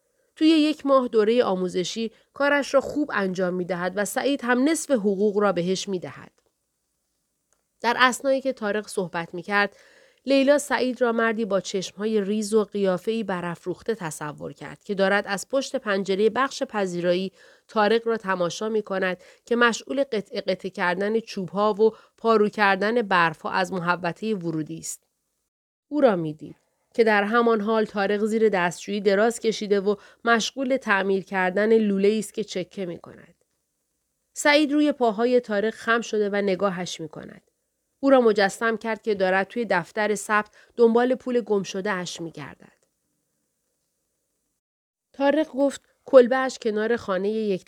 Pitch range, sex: 190-235 Hz, female